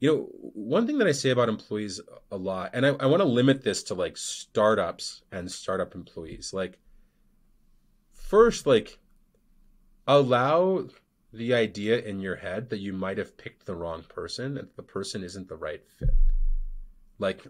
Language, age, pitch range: English, 30-49, 105-140 Hz